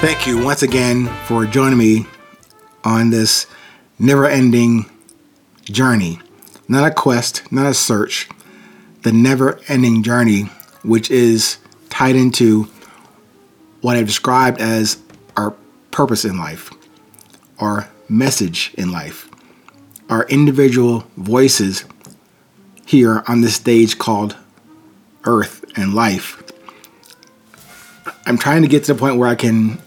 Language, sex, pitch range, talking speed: English, male, 110-130 Hz, 115 wpm